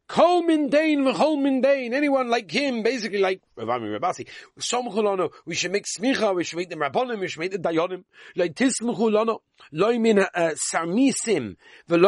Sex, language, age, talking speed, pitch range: male, English, 40-59, 160 wpm, 150-235 Hz